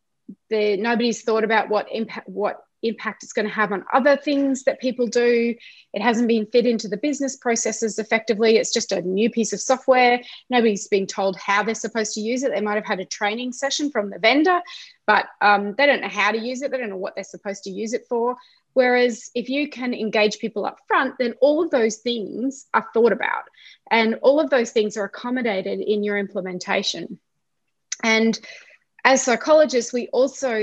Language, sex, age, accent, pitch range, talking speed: English, female, 20-39, Australian, 205-255 Hz, 195 wpm